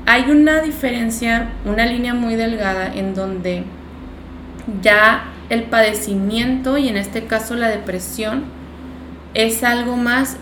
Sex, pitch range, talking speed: female, 200-240 Hz, 120 wpm